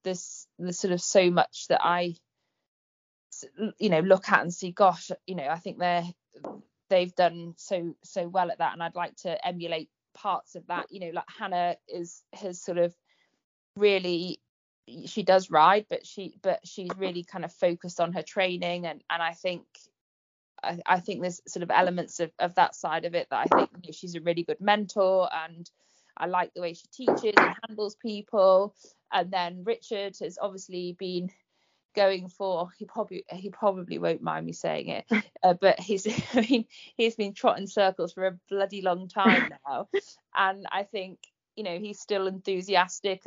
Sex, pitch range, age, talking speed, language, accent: female, 175-200 Hz, 20-39, 185 wpm, English, British